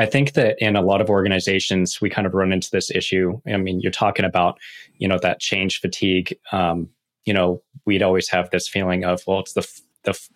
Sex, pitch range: male, 95-110 Hz